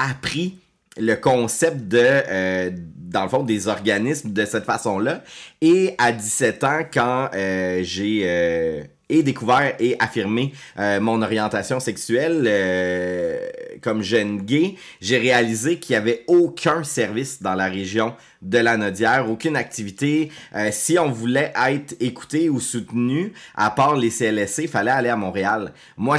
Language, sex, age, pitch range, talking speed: French, male, 30-49, 105-135 Hz, 150 wpm